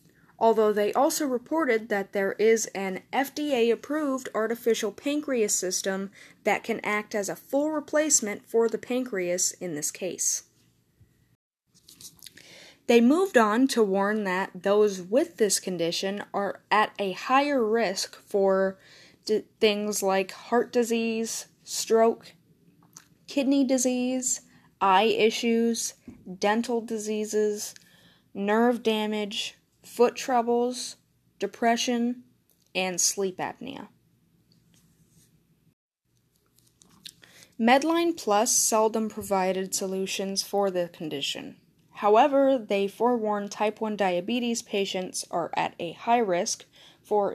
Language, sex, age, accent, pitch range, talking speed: English, female, 10-29, American, 195-240 Hz, 105 wpm